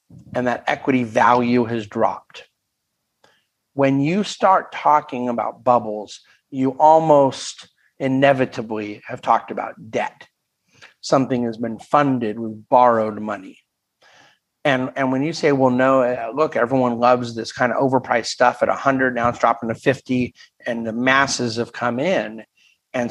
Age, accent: 50-69, American